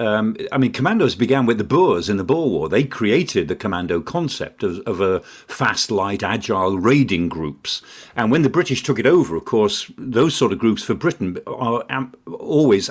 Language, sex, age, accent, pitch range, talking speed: English, male, 50-69, British, 95-130 Hz, 200 wpm